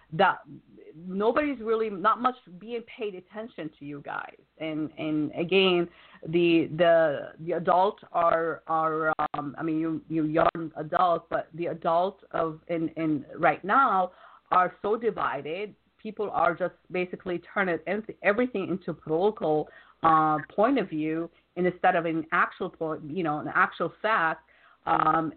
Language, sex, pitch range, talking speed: English, female, 165-200 Hz, 140 wpm